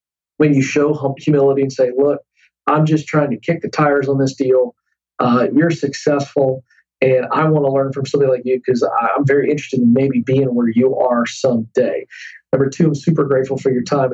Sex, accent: male, American